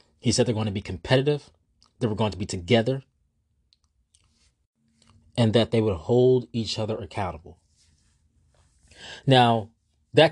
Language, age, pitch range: English, 20-39, 95-130 Hz